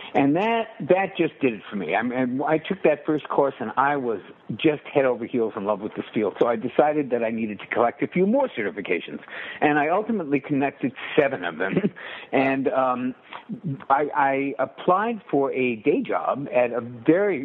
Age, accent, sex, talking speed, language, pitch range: 60-79, American, male, 200 wpm, English, 120-175 Hz